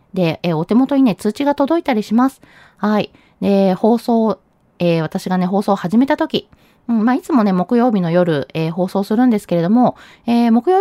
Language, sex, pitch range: Japanese, female, 185-250 Hz